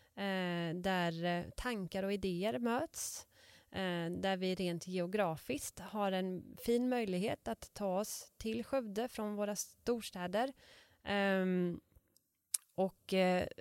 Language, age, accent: Swedish, 30-49, native